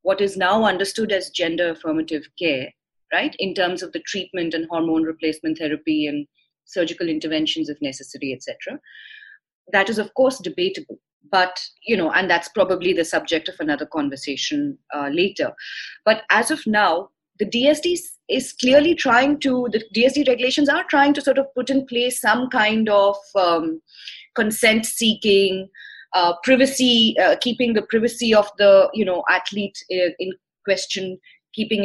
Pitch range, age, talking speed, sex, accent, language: 180-270 Hz, 30-49, 155 wpm, female, Indian, English